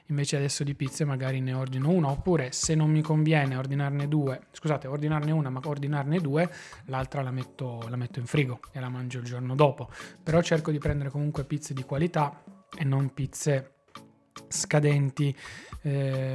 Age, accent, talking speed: 20-39, native, 175 wpm